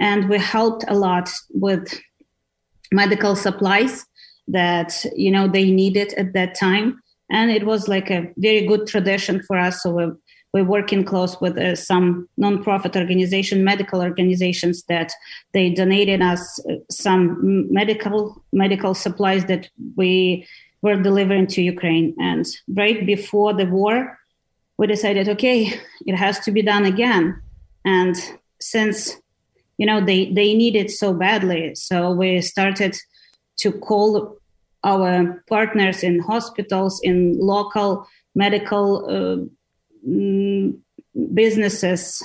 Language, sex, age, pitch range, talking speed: English, female, 20-39, 180-210 Hz, 130 wpm